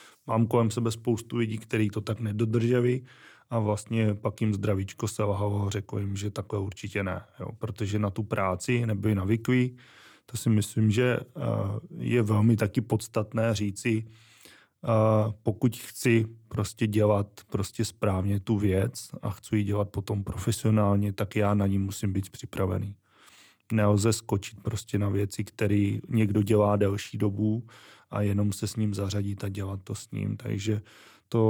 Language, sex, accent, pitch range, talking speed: Czech, male, native, 100-115 Hz, 160 wpm